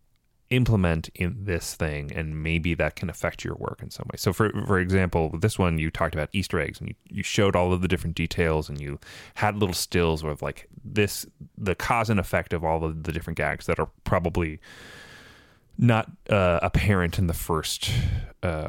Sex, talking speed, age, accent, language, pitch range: male, 200 wpm, 30-49, American, English, 80-100 Hz